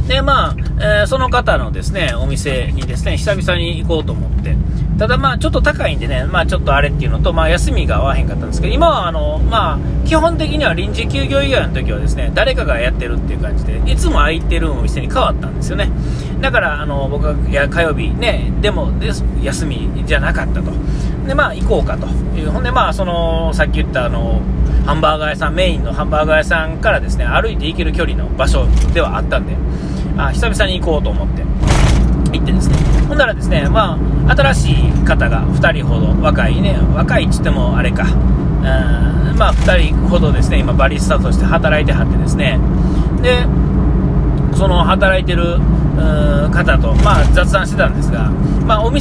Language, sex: Japanese, male